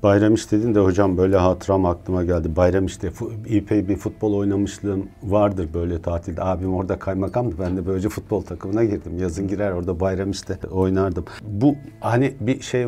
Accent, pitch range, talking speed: native, 95-110 Hz, 165 wpm